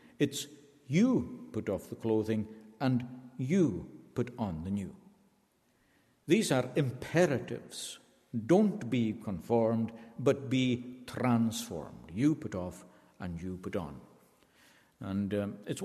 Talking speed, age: 115 wpm, 60-79